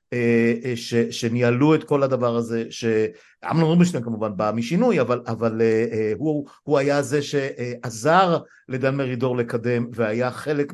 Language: Hebrew